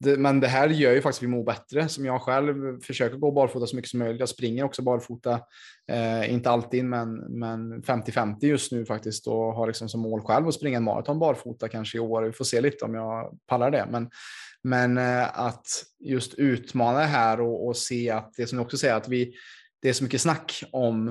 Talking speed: 225 wpm